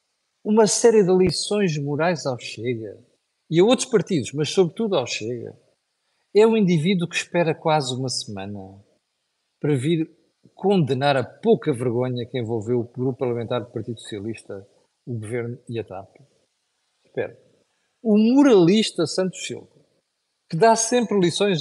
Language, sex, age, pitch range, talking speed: Portuguese, male, 50-69, 130-185 Hz, 140 wpm